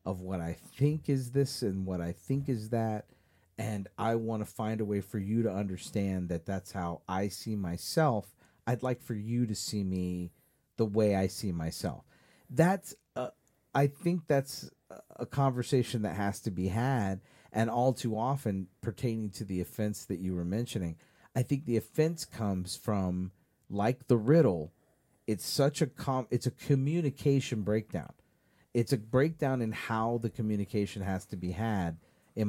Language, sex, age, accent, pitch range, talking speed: English, male, 40-59, American, 95-125 Hz, 175 wpm